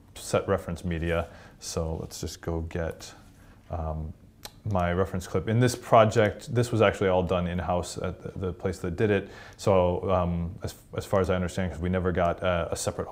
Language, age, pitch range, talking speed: English, 30-49, 90-100 Hz, 200 wpm